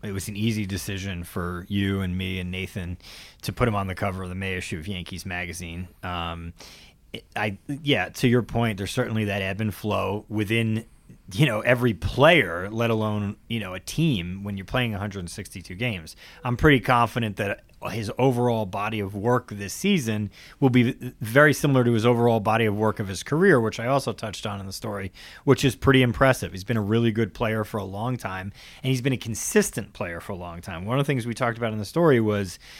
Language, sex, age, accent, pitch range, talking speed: English, male, 30-49, American, 100-125 Hz, 220 wpm